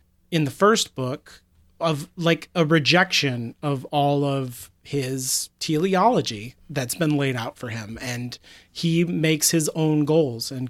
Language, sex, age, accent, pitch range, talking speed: English, male, 30-49, American, 120-155 Hz, 145 wpm